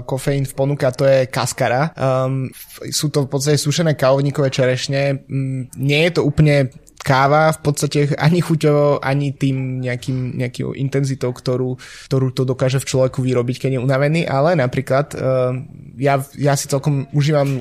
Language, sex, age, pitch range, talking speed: Slovak, male, 20-39, 130-145 Hz, 155 wpm